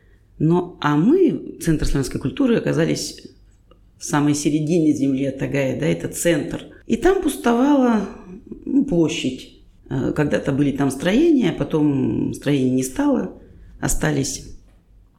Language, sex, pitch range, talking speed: Russian, female, 135-170 Hz, 110 wpm